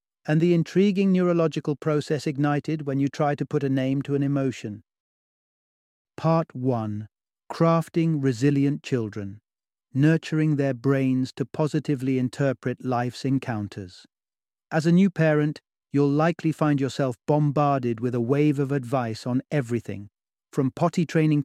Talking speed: 135 wpm